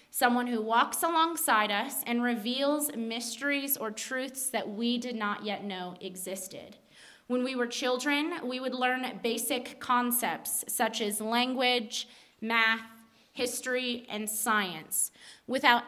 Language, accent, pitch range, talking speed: English, American, 220-265 Hz, 130 wpm